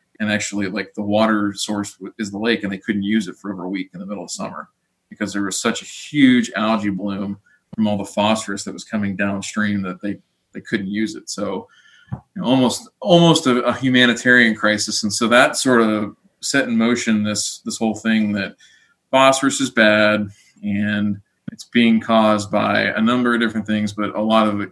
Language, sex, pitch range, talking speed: English, male, 105-115 Hz, 200 wpm